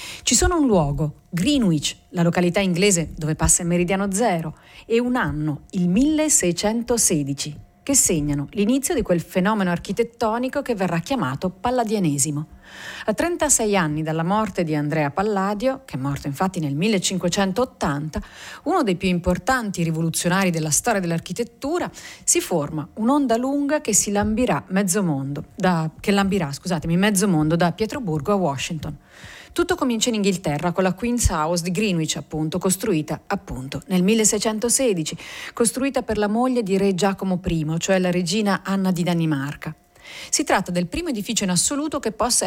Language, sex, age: Italian, female, 40-59